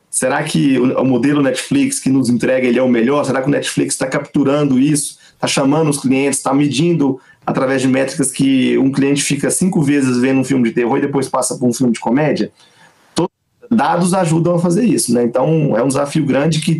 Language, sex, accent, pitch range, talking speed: Portuguese, male, Brazilian, 130-165 Hz, 220 wpm